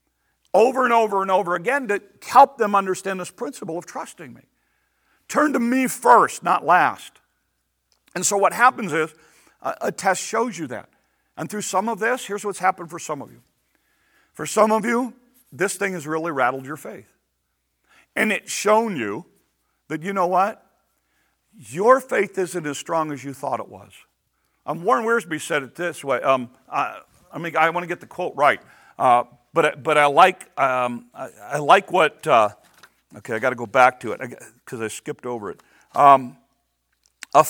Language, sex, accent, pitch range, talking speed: English, male, American, 145-230 Hz, 185 wpm